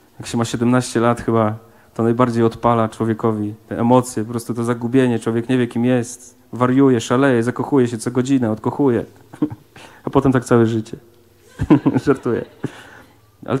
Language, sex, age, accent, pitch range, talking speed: Polish, male, 40-59, native, 110-135 Hz, 155 wpm